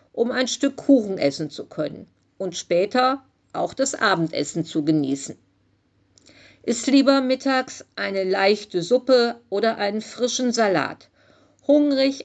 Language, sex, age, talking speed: German, female, 50-69, 120 wpm